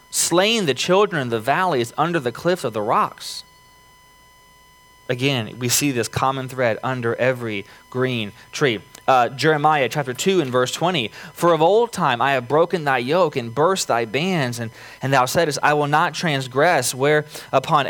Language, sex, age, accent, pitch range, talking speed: English, male, 20-39, American, 125-165 Hz, 175 wpm